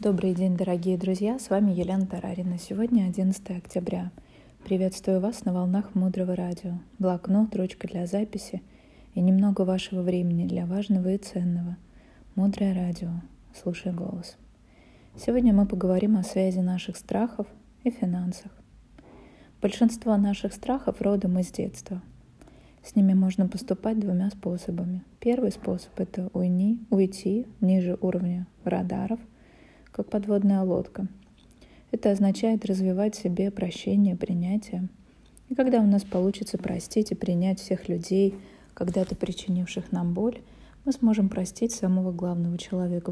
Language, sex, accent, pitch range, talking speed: Russian, female, native, 180-205 Hz, 130 wpm